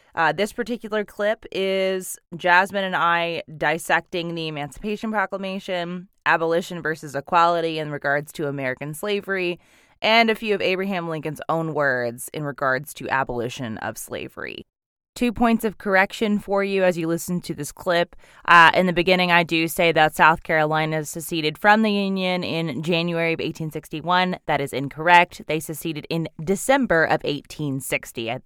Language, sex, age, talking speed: English, female, 20-39, 155 wpm